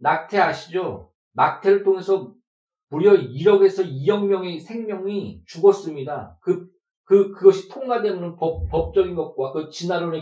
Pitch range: 160-225 Hz